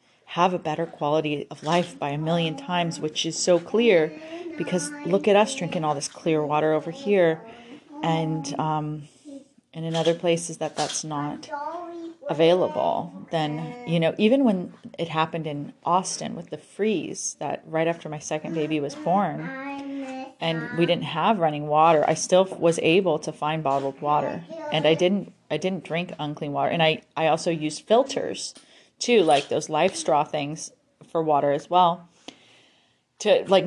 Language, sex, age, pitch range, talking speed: English, female, 30-49, 155-190 Hz, 170 wpm